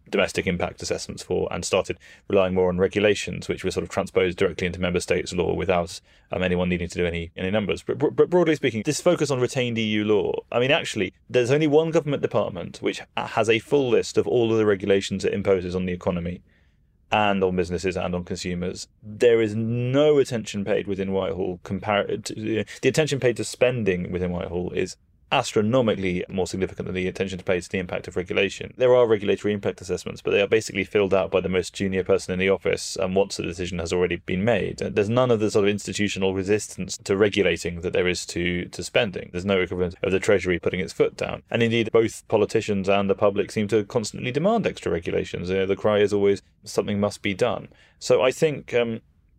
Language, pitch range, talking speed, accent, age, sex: English, 90-115 Hz, 215 wpm, British, 20-39, male